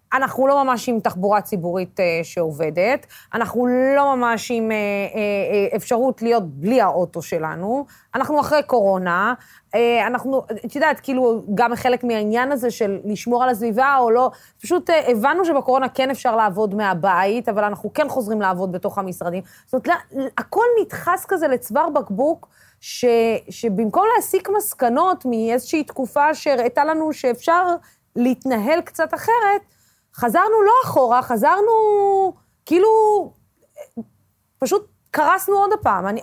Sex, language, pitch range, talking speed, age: female, Hebrew, 215-300 Hz, 135 wpm, 20-39